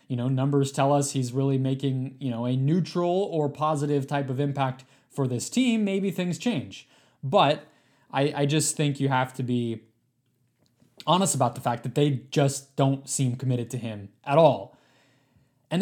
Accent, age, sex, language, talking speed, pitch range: American, 20-39, male, English, 180 wpm, 130-155 Hz